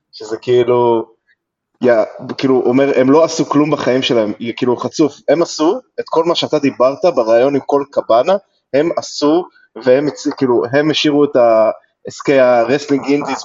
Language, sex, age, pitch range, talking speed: Hebrew, male, 20-39, 120-150 Hz, 150 wpm